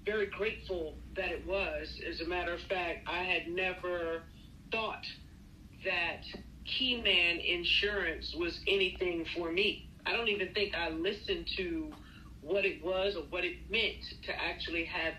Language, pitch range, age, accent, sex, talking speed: English, 170-200 Hz, 40-59, American, female, 150 wpm